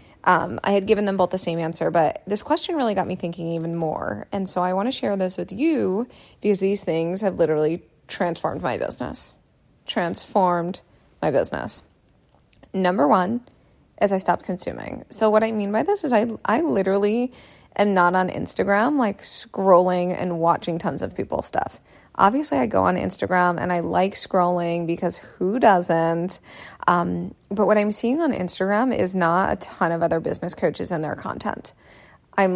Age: 20-39